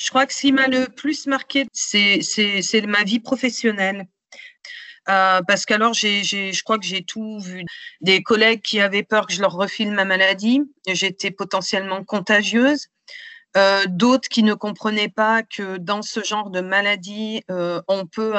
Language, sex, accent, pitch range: French, female, French, 195-240 Hz